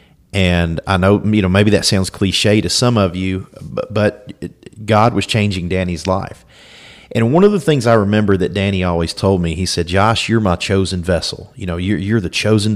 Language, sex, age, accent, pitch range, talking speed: English, male, 40-59, American, 85-100 Hz, 205 wpm